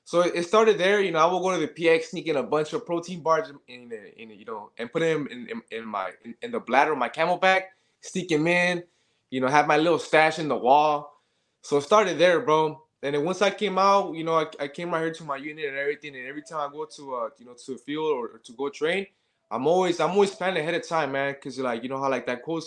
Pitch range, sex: 135-175 Hz, male